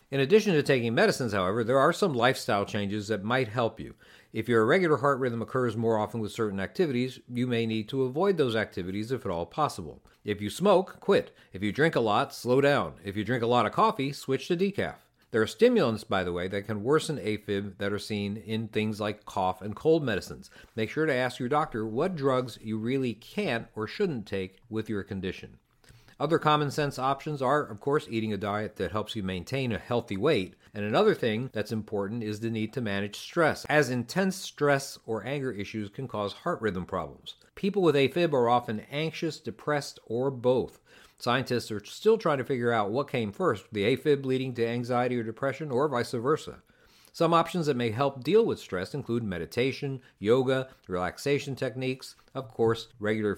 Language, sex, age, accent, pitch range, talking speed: English, male, 50-69, American, 105-140 Hz, 200 wpm